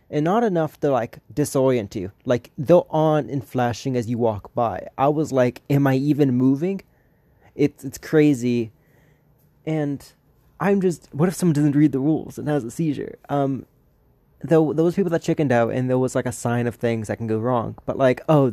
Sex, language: male, English